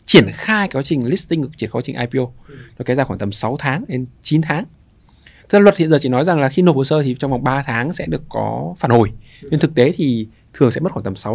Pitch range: 115-165 Hz